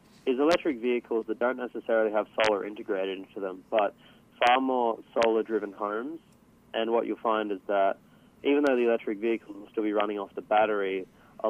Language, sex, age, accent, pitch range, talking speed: English, male, 20-39, Australian, 95-110 Hz, 185 wpm